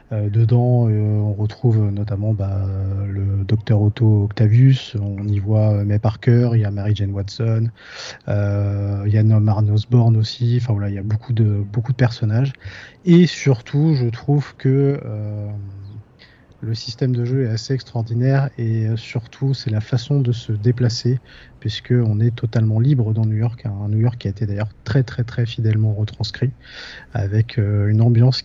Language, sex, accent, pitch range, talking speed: French, male, French, 105-125 Hz, 175 wpm